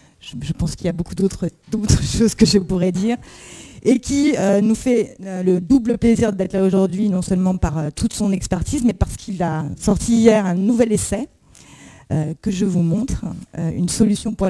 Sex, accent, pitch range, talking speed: female, French, 175-210 Hz, 205 wpm